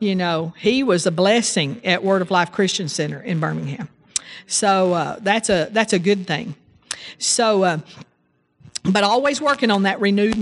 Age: 50-69